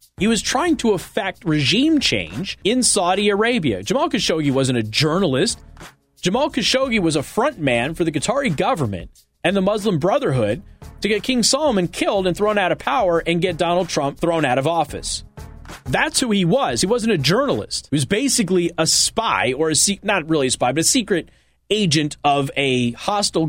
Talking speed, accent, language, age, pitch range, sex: 190 wpm, American, English, 30-49, 160-220 Hz, male